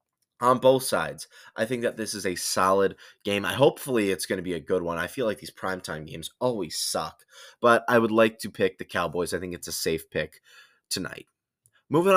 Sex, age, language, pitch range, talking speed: male, 20-39, English, 95-125 Hz, 215 wpm